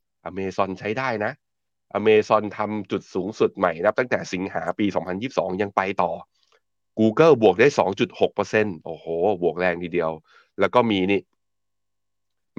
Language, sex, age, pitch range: Thai, male, 20-39, 90-110 Hz